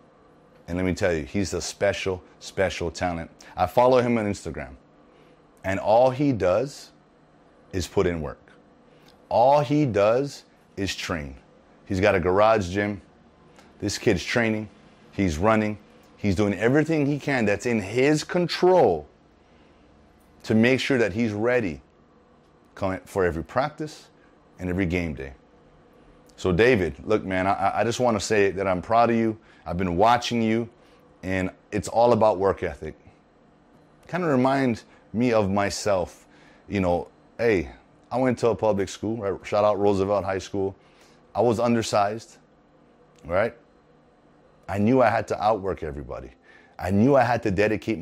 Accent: American